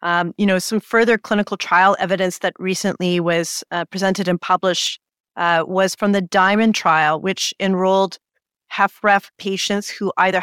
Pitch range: 180-205 Hz